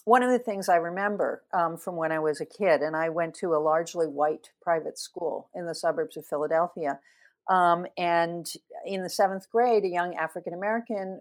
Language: English